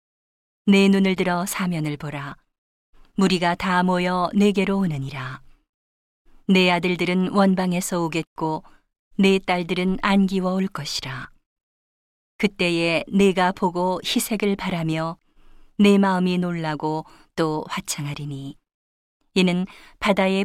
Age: 40-59